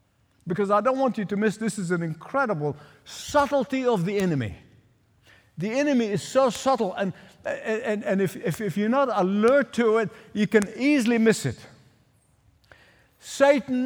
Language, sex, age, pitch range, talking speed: English, male, 50-69, 155-250 Hz, 160 wpm